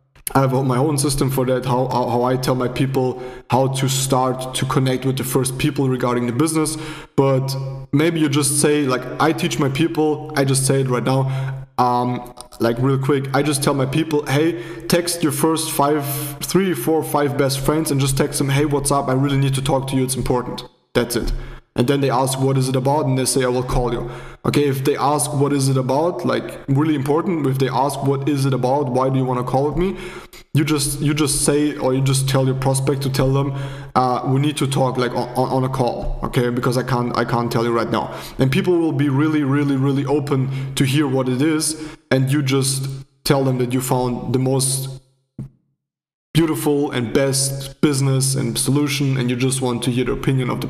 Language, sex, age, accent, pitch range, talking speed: English, male, 20-39, German, 130-150 Hz, 225 wpm